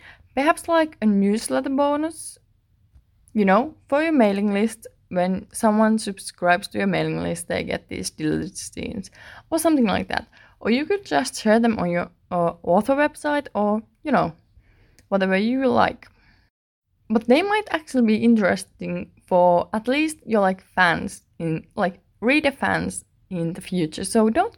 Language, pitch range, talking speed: English, 175-250 Hz, 160 wpm